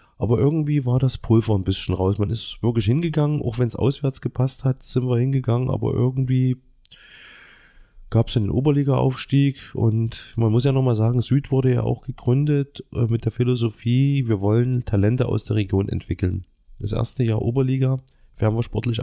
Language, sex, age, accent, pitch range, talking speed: German, male, 30-49, German, 105-130 Hz, 175 wpm